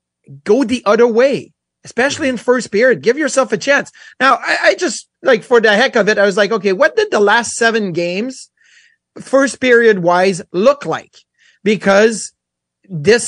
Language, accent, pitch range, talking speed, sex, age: English, American, 205-270 Hz, 175 wpm, male, 30-49